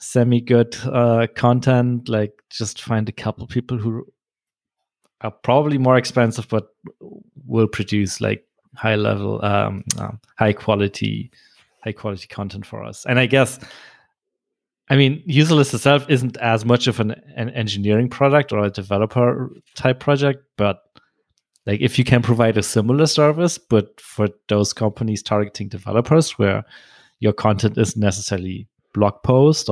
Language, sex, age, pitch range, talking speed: English, male, 30-49, 105-130 Hz, 145 wpm